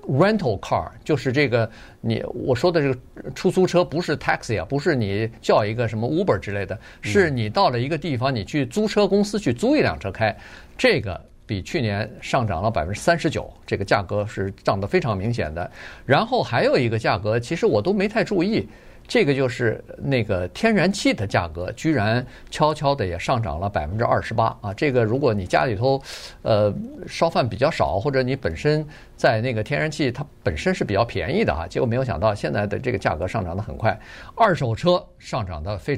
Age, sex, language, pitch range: 50-69, male, Chinese, 105-135 Hz